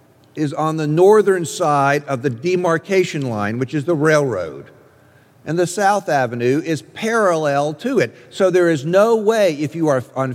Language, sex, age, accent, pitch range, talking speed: English, male, 50-69, American, 125-160 Hz, 175 wpm